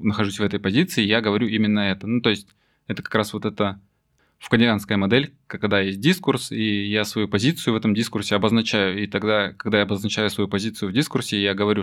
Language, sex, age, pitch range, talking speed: Russian, male, 20-39, 100-120 Hz, 205 wpm